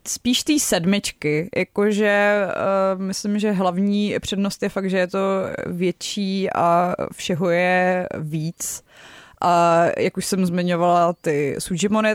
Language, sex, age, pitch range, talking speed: Czech, female, 20-39, 160-180 Hz, 130 wpm